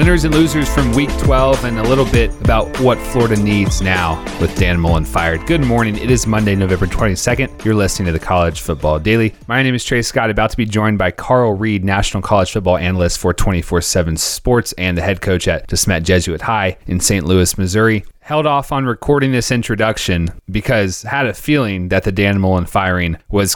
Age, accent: 30-49, American